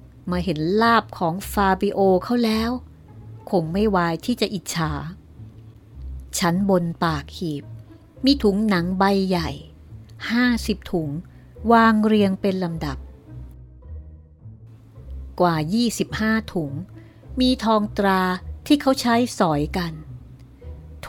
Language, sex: Thai, female